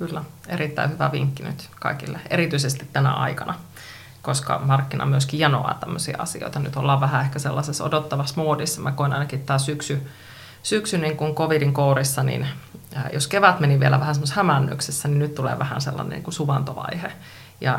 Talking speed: 165 wpm